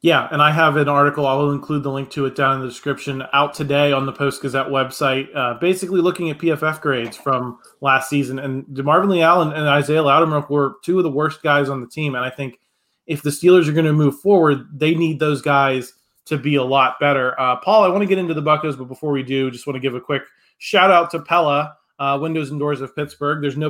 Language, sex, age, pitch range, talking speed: English, male, 20-39, 140-165 Hz, 245 wpm